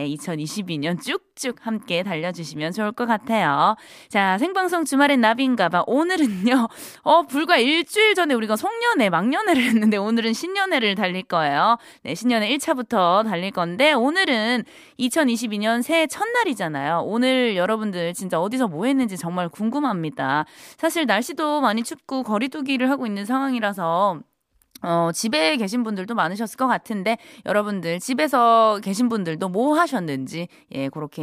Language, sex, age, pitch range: Korean, female, 20-39, 200-300 Hz